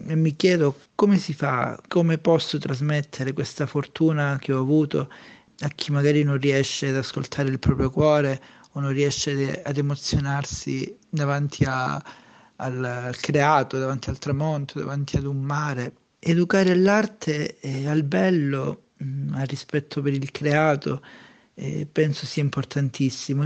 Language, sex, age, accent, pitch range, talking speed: Italian, male, 40-59, native, 135-160 Hz, 140 wpm